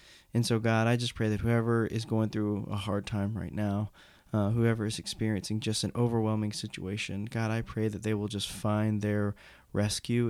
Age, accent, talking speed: 20-39, American, 200 wpm